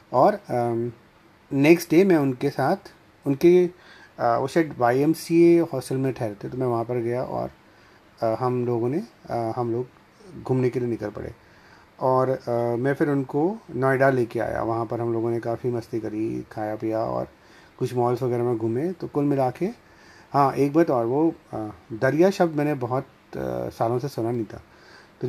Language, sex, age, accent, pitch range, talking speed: Hindi, male, 30-49, native, 120-145 Hz, 170 wpm